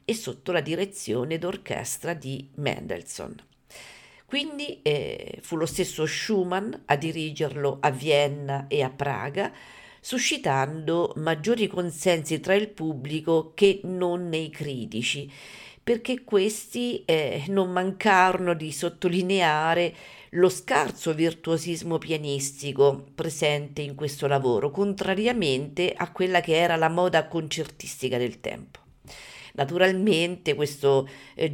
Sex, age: female, 50-69